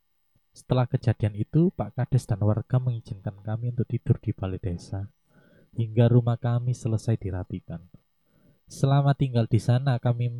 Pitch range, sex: 105-130 Hz, male